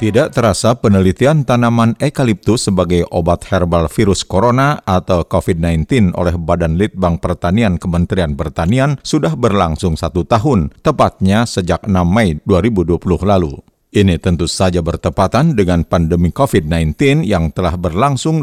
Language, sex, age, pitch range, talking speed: Indonesian, male, 50-69, 90-120 Hz, 125 wpm